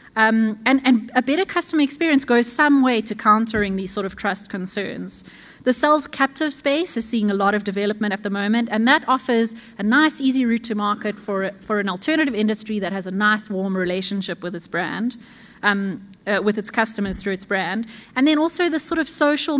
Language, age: English, 30-49